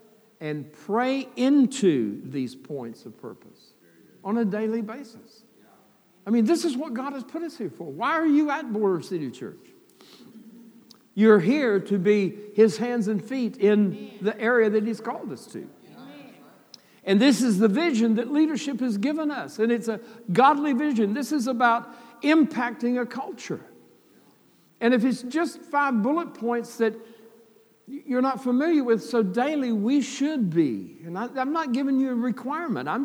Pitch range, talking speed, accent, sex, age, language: 205-255 Hz, 165 wpm, American, male, 60-79, English